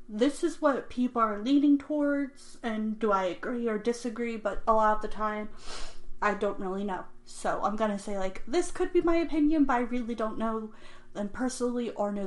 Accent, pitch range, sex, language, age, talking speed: American, 205-245 Hz, female, English, 30-49, 205 wpm